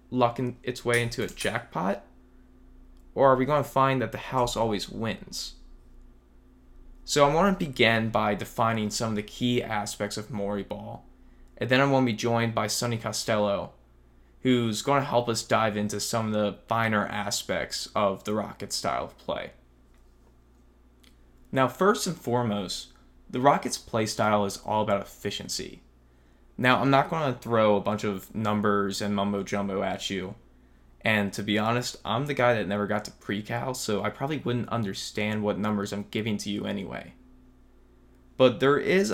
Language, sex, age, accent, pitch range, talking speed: English, male, 10-29, American, 100-120 Hz, 175 wpm